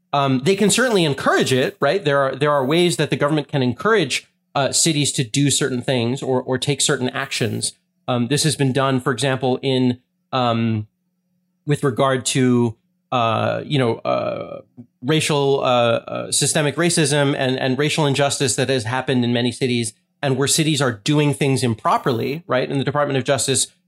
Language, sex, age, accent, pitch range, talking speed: English, male, 30-49, American, 130-160 Hz, 180 wpm